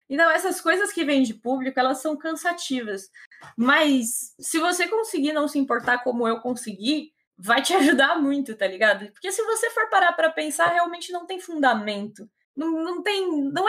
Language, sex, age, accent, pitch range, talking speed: Portuguese, female, 20-39, Brazilian, 230-320 Hz, 180 wpm